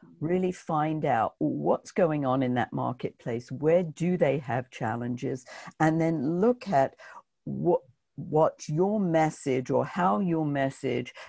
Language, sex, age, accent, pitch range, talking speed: English, female, 60-79, British, 130-170 Hz, 140 wpm